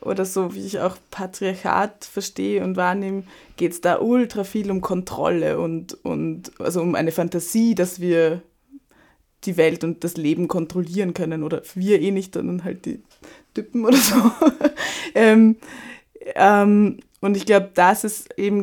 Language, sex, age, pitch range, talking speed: German, female, 20-39, 180-225 Hz, 160 wpm